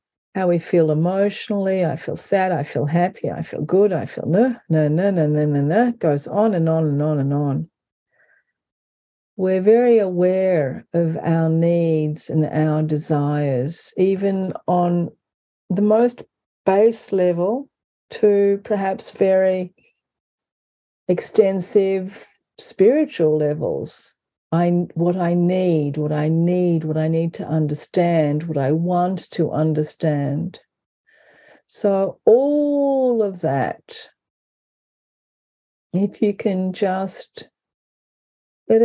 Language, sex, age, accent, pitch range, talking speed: English, female, 50-69, Australian, 155-195 Hz, 120 wpm